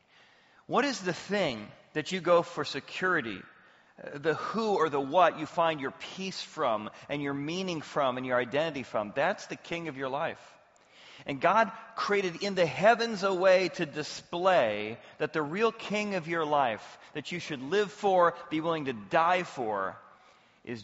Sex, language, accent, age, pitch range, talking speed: male, English, American, 40-59, 125-170 Hz, 175 wpm